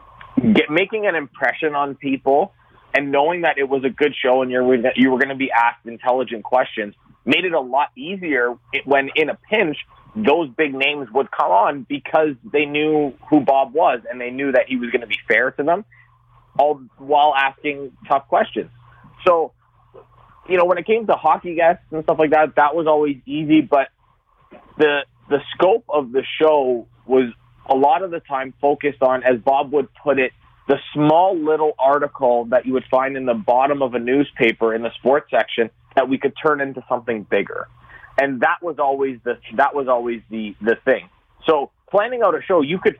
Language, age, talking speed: English, 30-49, 200 wpm